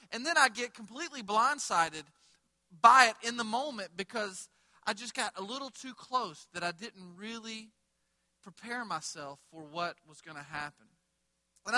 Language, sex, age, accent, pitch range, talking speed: English, male, 40-59, American, 185-230 Hz, 165 wpm